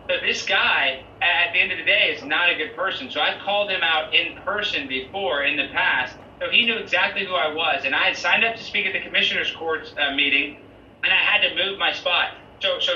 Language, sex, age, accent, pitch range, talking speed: English, male, 30-49, American, 135-175 Hz, 250 wpm